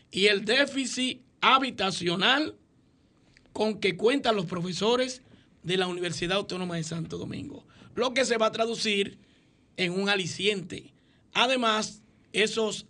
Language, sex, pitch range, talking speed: Spanish, male, 180-225 Hz, 125 wpm